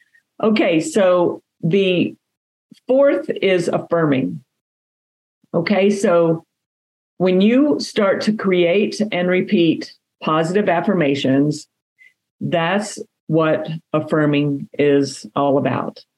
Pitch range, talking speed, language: 155-200 Hz, 85 wpm, English